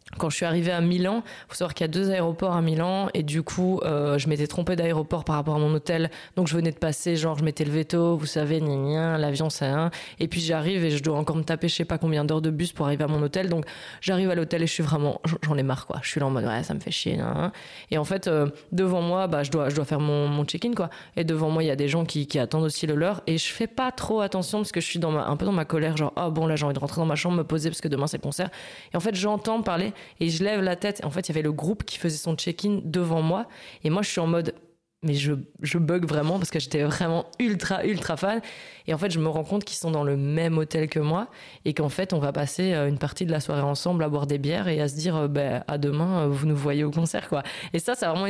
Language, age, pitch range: French, 20-39, 150-180 Hz